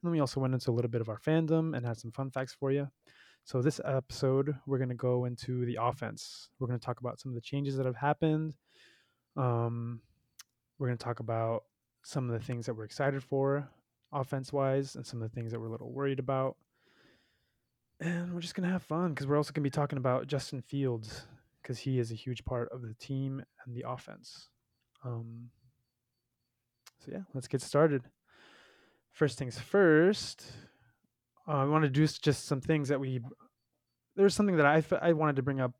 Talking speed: 210 wpm